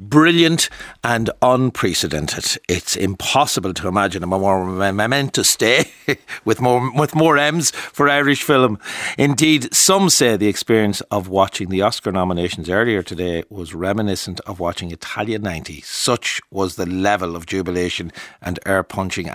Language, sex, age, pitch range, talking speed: English, male, 60-79, 95-125 Hz, 135 wpm